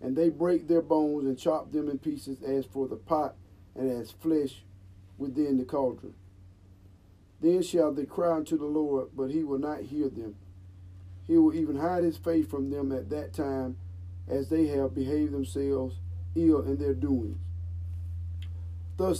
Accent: American